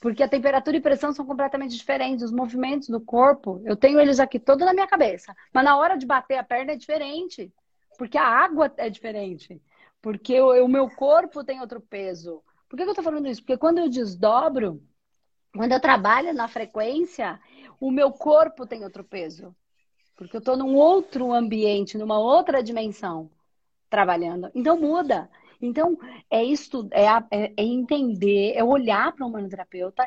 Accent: Brazilian